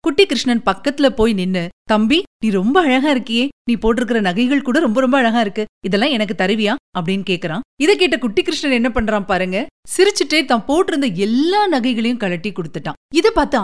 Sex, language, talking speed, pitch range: female, Tamil, 170 wpm, 215-290 Hz